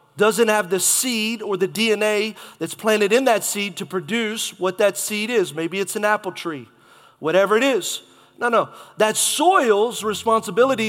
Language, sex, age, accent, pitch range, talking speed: English, male, 30-49, American, 190-230 Hz, 170 wpm